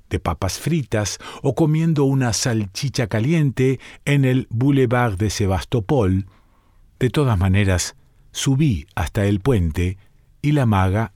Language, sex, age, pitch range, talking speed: Spanish, male, 50-69, 100-130 Hz, 125 wpm